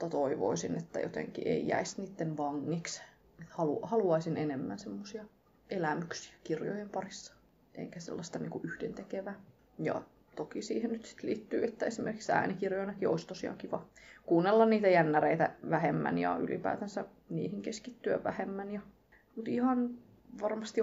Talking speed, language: 125 wpm, English